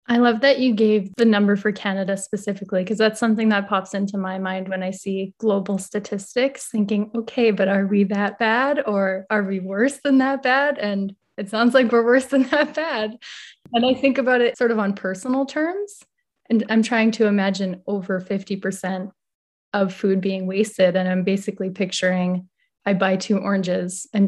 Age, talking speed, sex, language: 10-29, 190 wpm, female, English